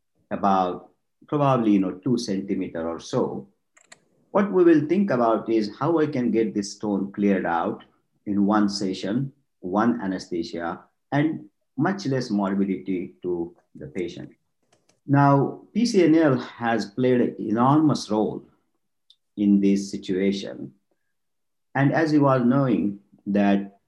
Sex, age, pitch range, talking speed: male, 50-69, 95-135 Hz, 125 wpm